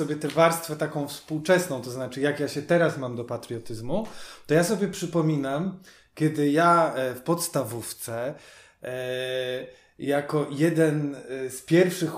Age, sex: 20-39, male